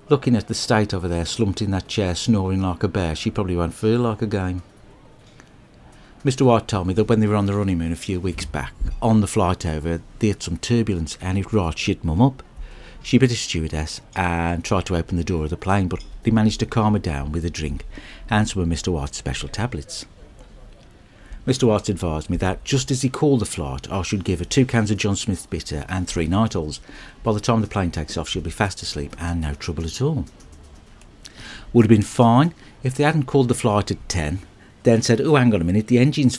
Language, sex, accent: English, male, British